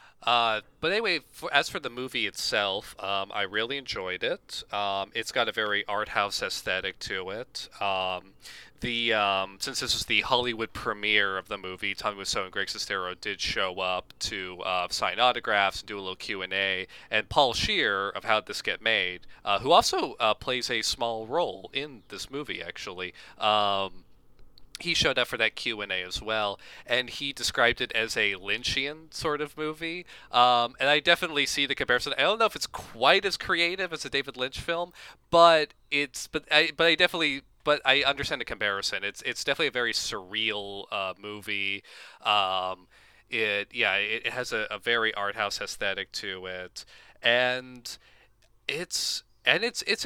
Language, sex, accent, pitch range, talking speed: English, male, American, 100-140 Hz, 185 wpm